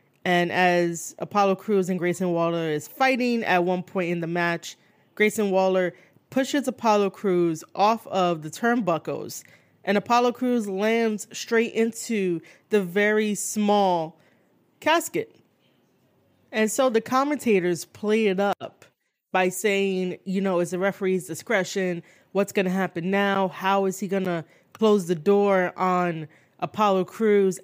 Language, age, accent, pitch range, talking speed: English, 20-39, American, 175-215 Hz, 140 wpm